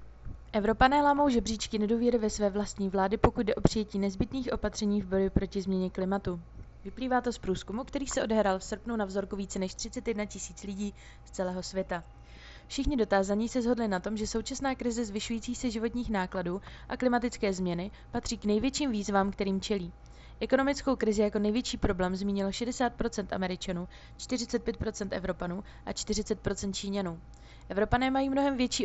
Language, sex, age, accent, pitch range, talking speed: Czech, female, 20-39, native, 195-235 Hz, 160 wpm